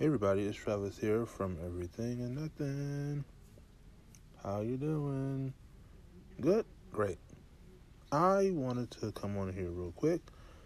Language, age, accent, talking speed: English, 30-49, American, 125 wpm